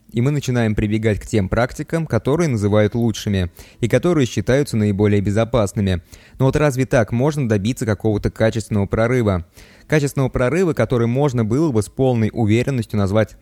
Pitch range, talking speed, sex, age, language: 105-130 Hz, 150 wpm, male, 20-39, Russian